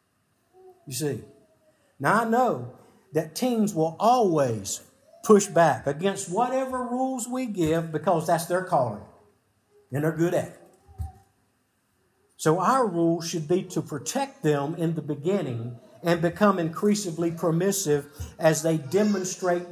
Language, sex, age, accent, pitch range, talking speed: English, male, 50-69, American, 155-205 Hz, 130 wpm